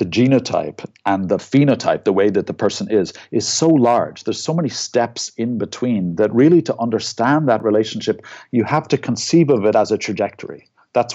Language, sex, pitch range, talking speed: English, male, 105-135 Hz, 195 wpm